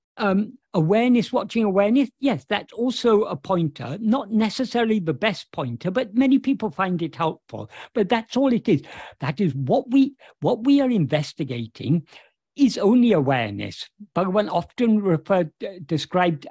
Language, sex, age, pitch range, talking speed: English, male, 60-79, 150-225 Hz, 145 wpm